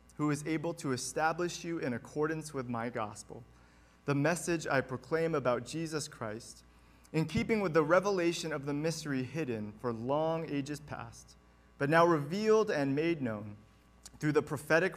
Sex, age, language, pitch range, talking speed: male, 30-49, English, 110-155 Hz, 160 wpm